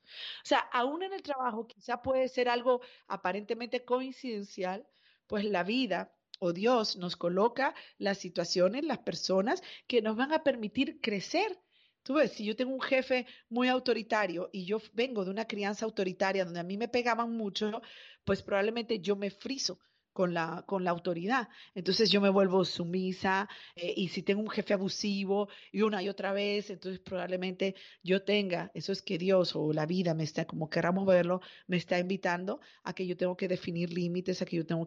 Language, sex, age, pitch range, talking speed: Spanish, female, 40-59, 185-250 Hz, 190 wpm